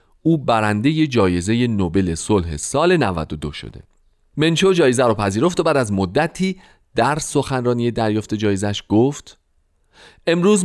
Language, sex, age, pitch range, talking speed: Persian, male, 40-59, 100-150 Hz, 135 wpm